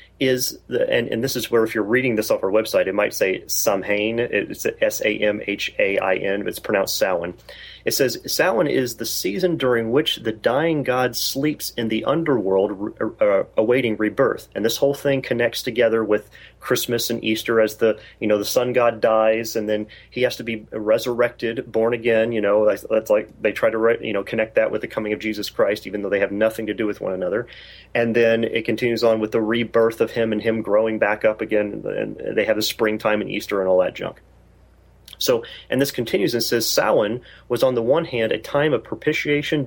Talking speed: 220 wpm